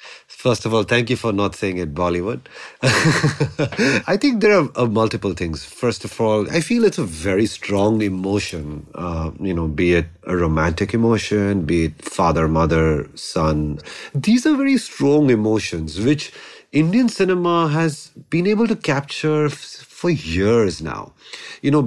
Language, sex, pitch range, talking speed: English, male, 95-140 Hz, 155 wpm